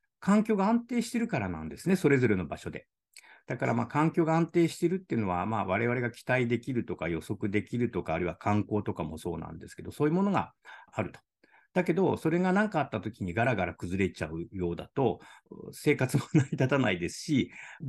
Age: 50-69